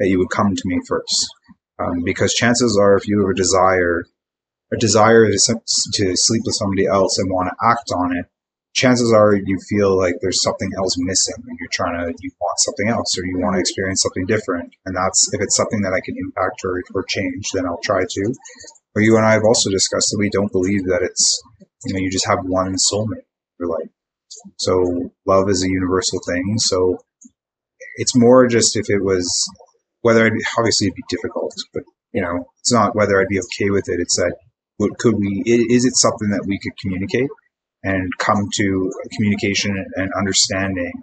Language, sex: English, male